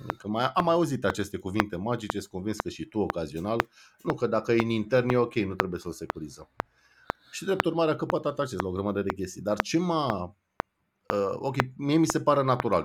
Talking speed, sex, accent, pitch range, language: 225 wpm, male, native, 105-145 Hz, Romanian